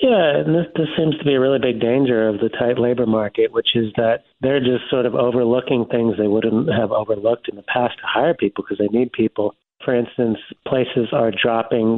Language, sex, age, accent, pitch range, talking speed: English, male, 40-59, American, 105-125 Hz, 220 wpm